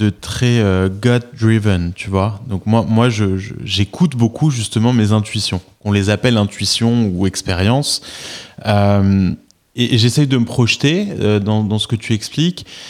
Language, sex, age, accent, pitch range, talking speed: French, male, 20-39, French, 100-130 Hz, 175 wpm